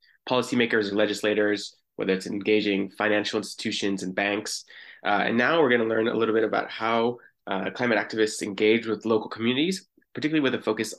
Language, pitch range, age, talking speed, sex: English, 105-120 Hz, 20-39, 180 wpm, male